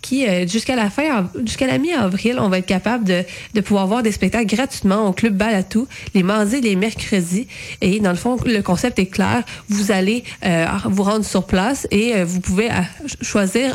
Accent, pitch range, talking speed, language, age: Canadian, 185-220 Hz, 200 wpm, French, 30-49